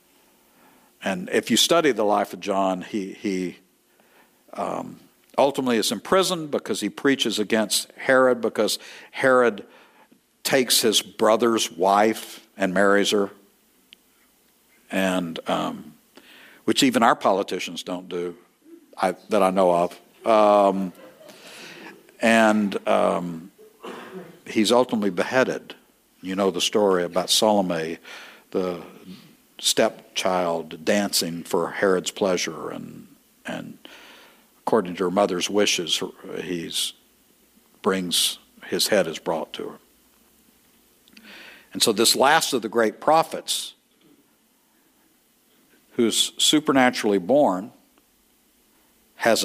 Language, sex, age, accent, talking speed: English, male, 60-79, American, 105 wpm